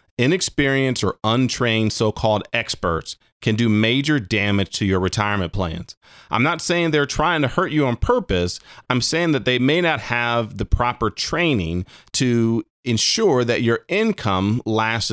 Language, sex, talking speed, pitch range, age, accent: English, male, 155 wpm, 100-135 Hz, 40-59, American